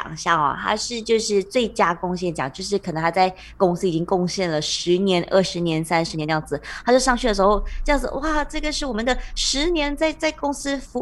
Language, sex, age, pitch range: Chinese, female, 20-39, 170-240 Hz